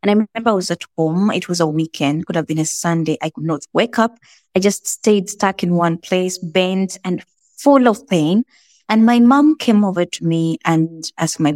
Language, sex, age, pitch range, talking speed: English, female, 20-39, 165-200 Hz, 225 wpm